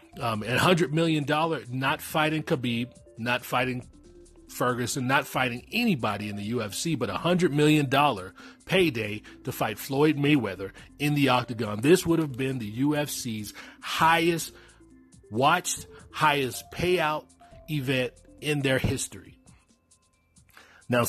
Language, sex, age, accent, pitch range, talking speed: English, male, 30-49, American, 115-150 Hz, 130 wpm